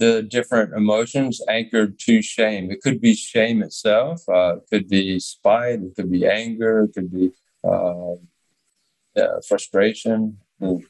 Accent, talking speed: American, 145 wpm